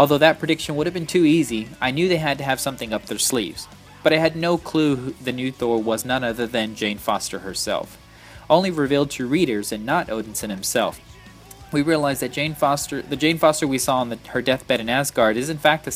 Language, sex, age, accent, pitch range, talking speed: English, male, 20-39, American, 115-150 Hz, 225 wpm